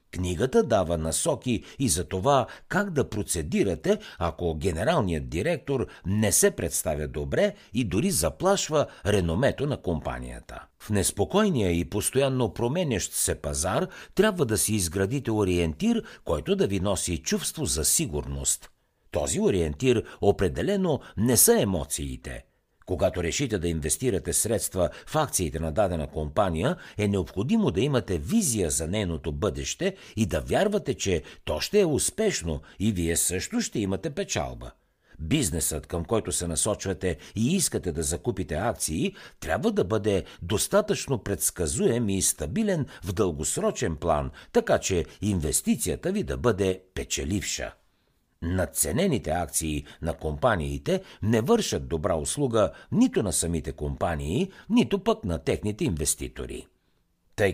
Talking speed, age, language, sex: 130 wpm, 60-79, Bulgarian, male